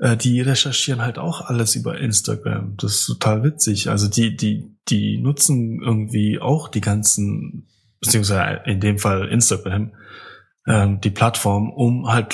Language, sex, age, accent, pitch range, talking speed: German, male, 20-39, German, 105-130 Hz, 140 wpm